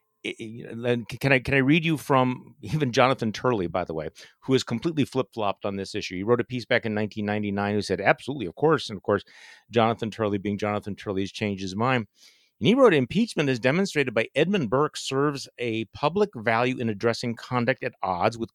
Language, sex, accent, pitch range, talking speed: English, male, American, 110-145 Hz, 210 wpm